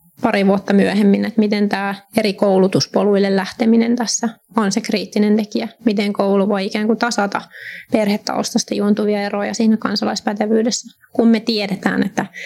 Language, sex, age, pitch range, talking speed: Finnish, female, 20-39, 205-230 Hz, 140 wpm